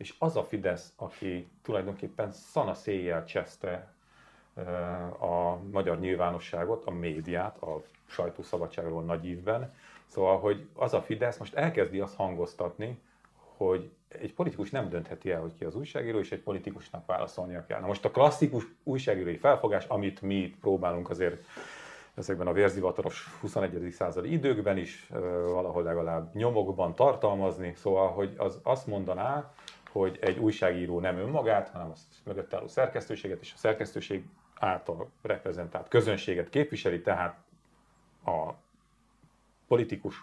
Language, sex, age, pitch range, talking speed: Hungarian, male, 40-59, 90-135 Hz, 135 wpm